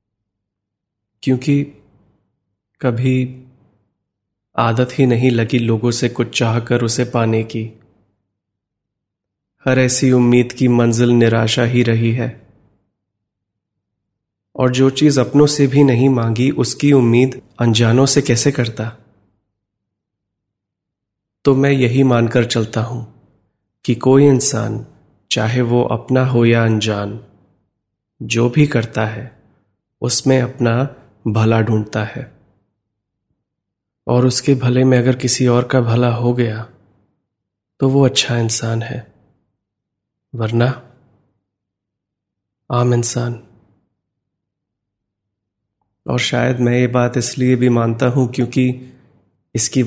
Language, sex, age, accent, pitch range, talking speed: Hindi, male, 30-49, native, 105-125 Hz, 110 wpm